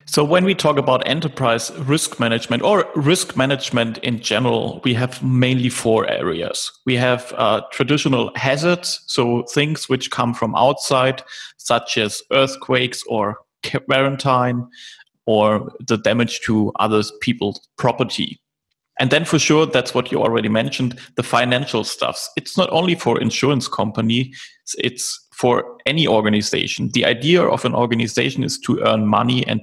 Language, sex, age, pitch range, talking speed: English, male, 30-49, 115-145 Hz, 150 wpm